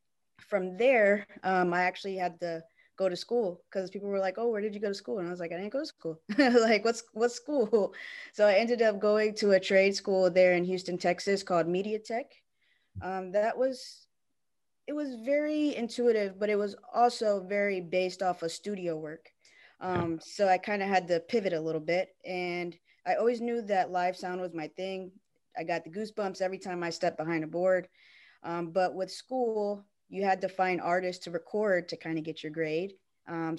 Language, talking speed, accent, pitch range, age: English, 210 wpm, American, 175-210 Hz, 20-39